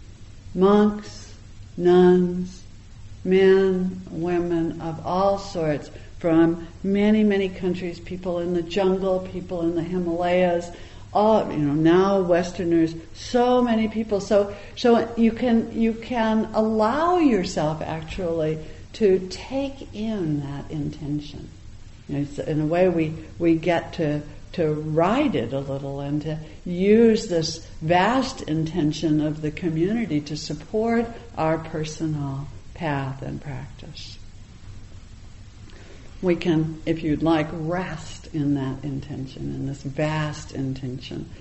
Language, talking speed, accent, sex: English, 125 wpm, American, female